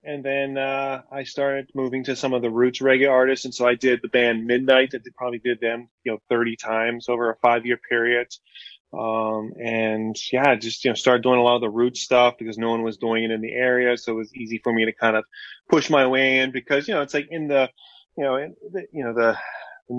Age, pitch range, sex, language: 20-39, 110-130 Hz, male, English